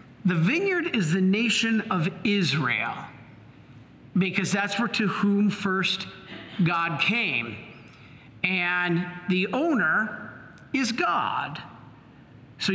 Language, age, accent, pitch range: English, 50-69, American, 160-210 Hz